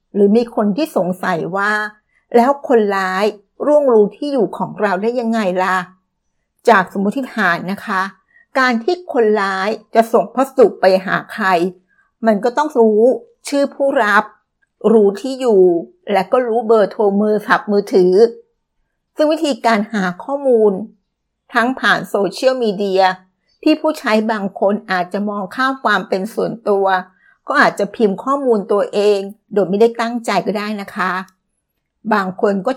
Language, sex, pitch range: Thai, female, 195-240 Hz